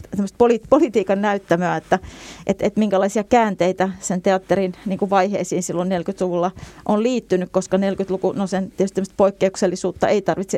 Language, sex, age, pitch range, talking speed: Finnish, female, 30-49, 175-195 Hz, 135 wpm